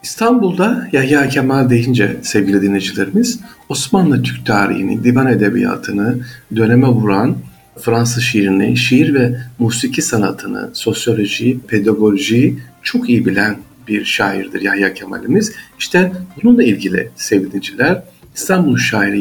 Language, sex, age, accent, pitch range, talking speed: Turkish, male, 50-69, native, 110-140 Hz, 110 wpm